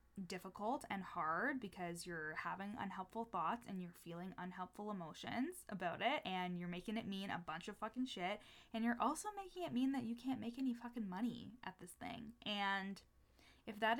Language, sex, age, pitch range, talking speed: English, female, 20-39, 185-225 Hz, 190 wpm